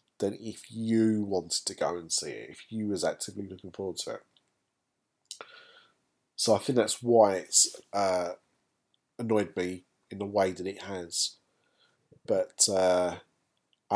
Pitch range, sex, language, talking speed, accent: 95-115 Hz, male, English, 145 wpm, British